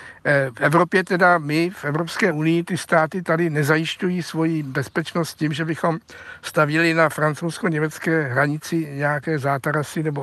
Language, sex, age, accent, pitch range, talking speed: Czech, male, 60-79, native, 150-175 Hz, 135 wpm